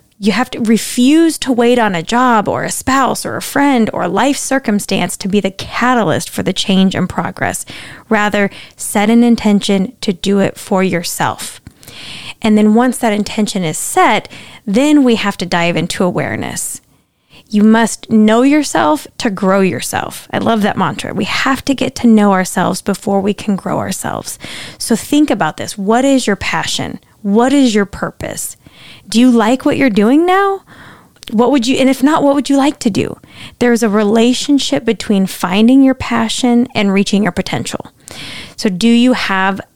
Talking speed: 180 wpm